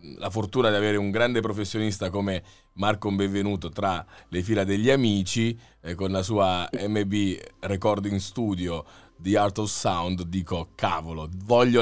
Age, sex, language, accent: 30-49, male, Italian, native